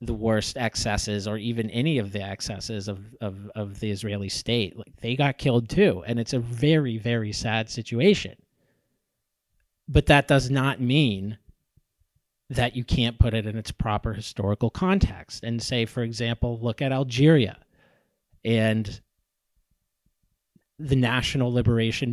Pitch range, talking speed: 105-135 Hz, 145 wpm